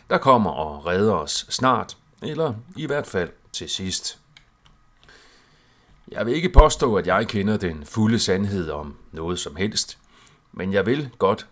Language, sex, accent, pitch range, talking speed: Danish, male, native, 90-115 Hz, 155 wpm